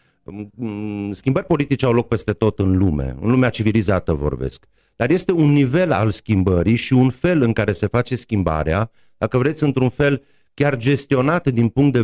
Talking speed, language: 175 wpm, Romanian